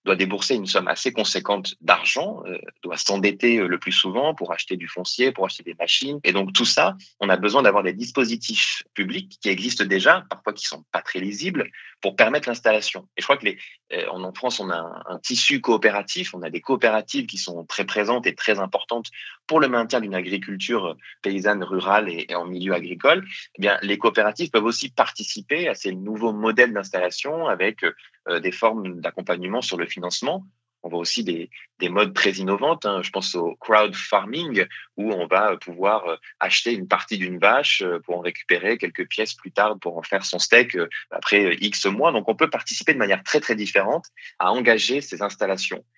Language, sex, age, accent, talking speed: French, male, 30-49, French, 200 wpm